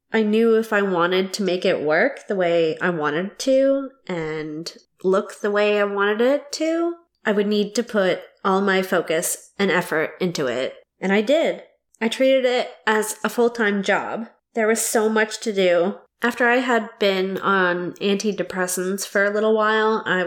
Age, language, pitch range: 20-39, English, 180-230 Hz